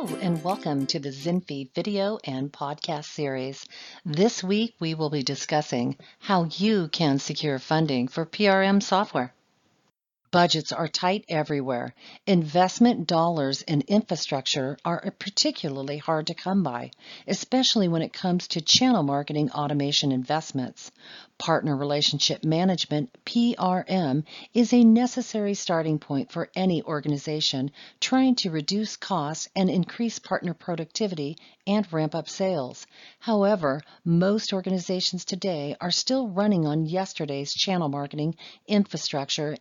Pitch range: 150-200 Hz